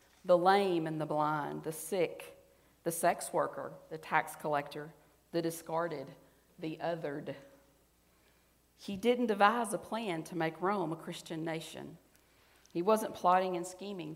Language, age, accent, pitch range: English, 40-59, American, 155-180 Hz